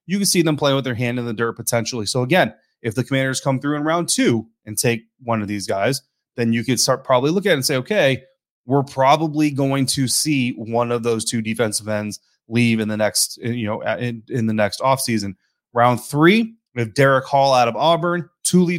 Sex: male